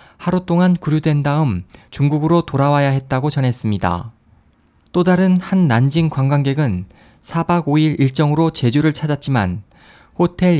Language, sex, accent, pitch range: Korean, male, native, 120-160 Hz